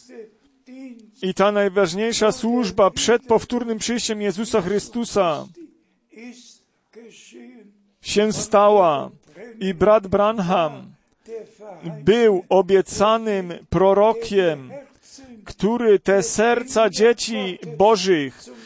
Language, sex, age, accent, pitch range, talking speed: Polish, male, 40-59, native, 200-230 Hz, 70 wpm